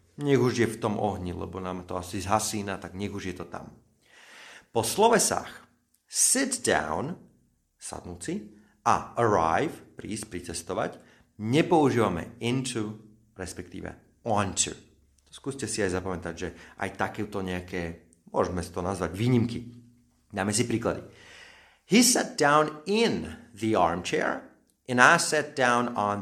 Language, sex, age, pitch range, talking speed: Slovak, male, 40-59, 90-115 Hz, 135 wpm